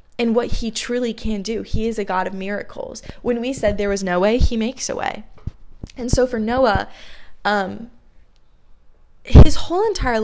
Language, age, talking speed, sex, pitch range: English, 20-39, 180 wpm, female, 200-245 Hz